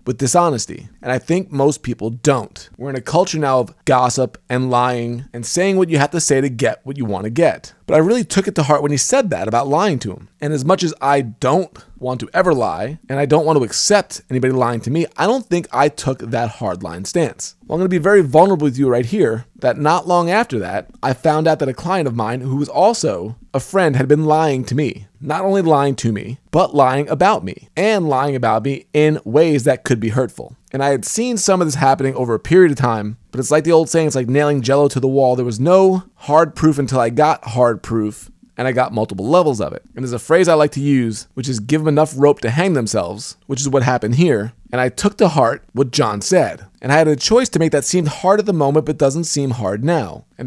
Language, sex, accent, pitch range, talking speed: English, male, American, 125-165 Hz, 260 wpm